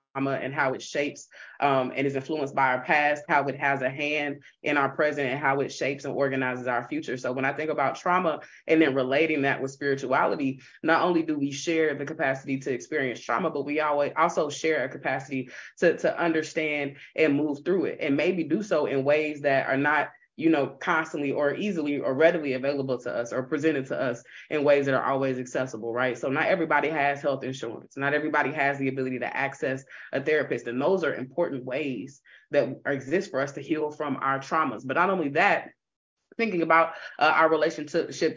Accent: American